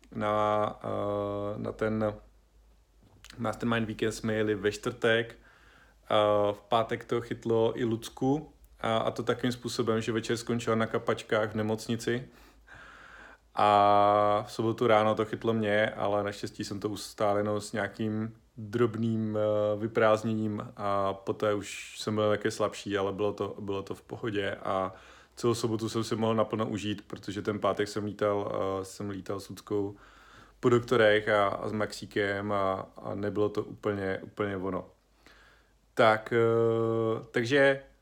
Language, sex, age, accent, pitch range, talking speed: Czech, male, 30-49, native, 105-120 Hz, 140 wpm